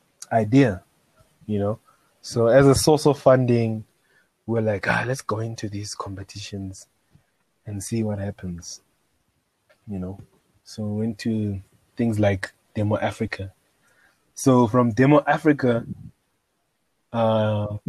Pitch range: 105-125 Hz